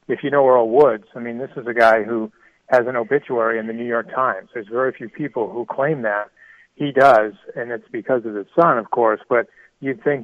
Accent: American